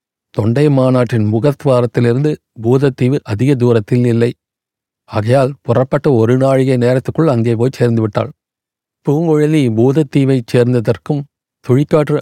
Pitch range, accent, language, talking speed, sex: 115-140 Hz, native, Tamil, 90 wpm, male